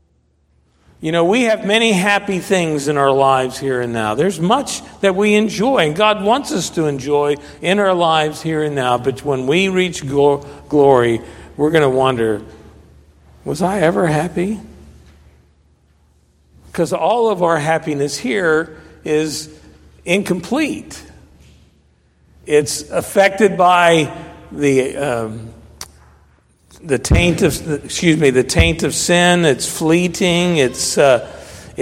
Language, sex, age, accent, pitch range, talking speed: English, male, 50-69, American, 115-170 Hz, 130 wpm